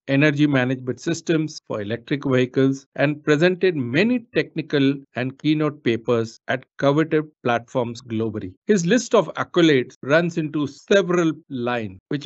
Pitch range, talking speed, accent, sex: 125-155 Hz, 125 wpm, Indian, male